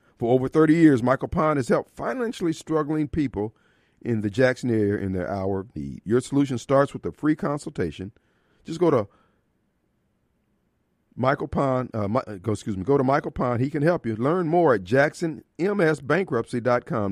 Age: 50-69